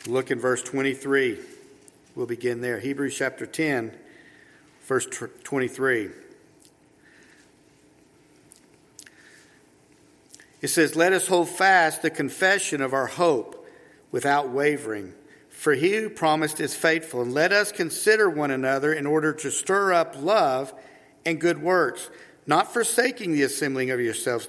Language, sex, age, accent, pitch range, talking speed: English, male, 50-69, American, 140-205 Hz, 130 wpm